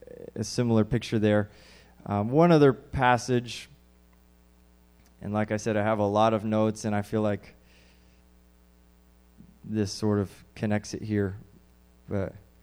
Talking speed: 140 wpm